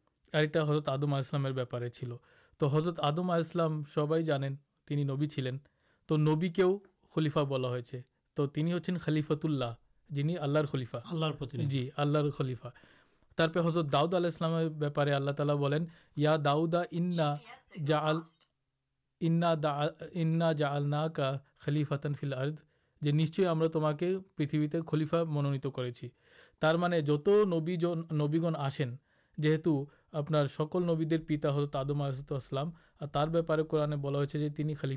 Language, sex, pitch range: Urdu, male, 140-160 Hz